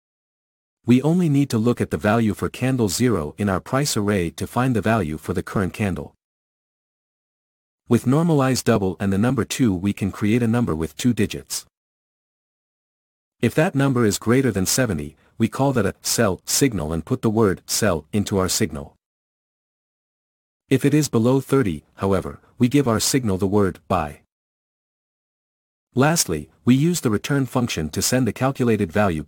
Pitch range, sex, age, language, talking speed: 95-125 Hz, male, 50-69, English, 170 wpm